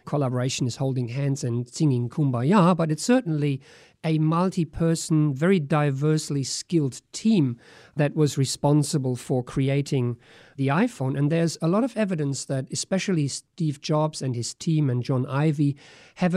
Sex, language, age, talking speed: male, English, 50-69, 145 wpm